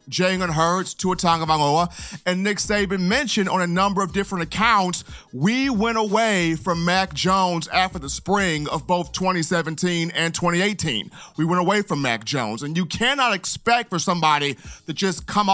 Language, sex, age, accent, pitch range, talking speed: English, male, 40-59, American, 170-210 Hz, 165 wpm